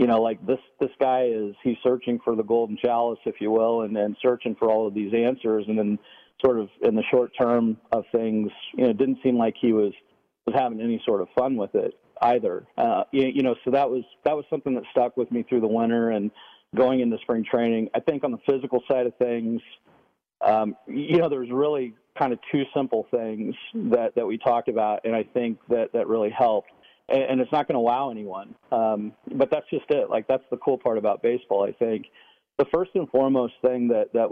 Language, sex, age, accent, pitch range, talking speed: English, male, 40-59, American, 110-130 Hz, 230 wpm